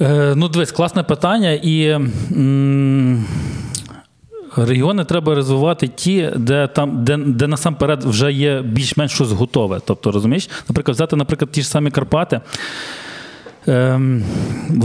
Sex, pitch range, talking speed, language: male, 120-155 Hz, 130 wpm, Ukrainian